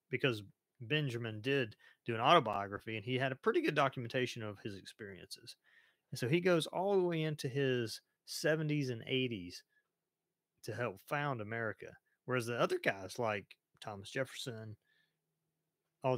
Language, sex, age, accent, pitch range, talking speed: English, male, 30-49, American, 110-140 Hz, 150 wpm